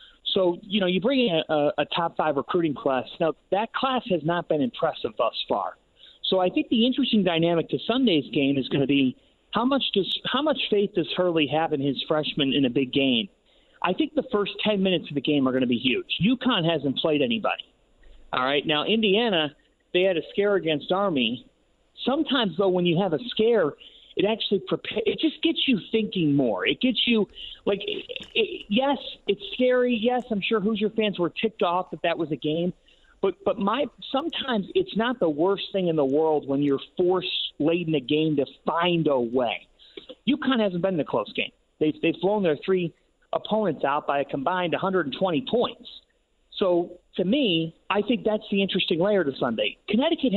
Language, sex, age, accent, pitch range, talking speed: English, male, 40-59, American, 160-240 Hz, 200 wpm